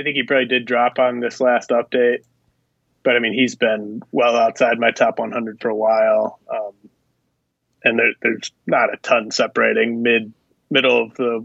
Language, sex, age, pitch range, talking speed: English, male, 20-39, 115-125 Hz, 180 wpm